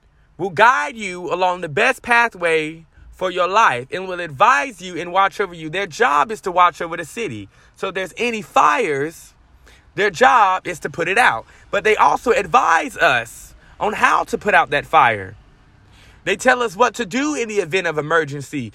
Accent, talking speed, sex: American, 195 wpm, male